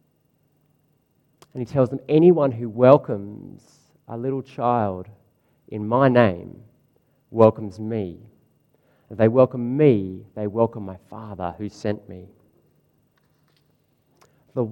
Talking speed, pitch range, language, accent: 110 wpm, 115-150 Hz, English, Australian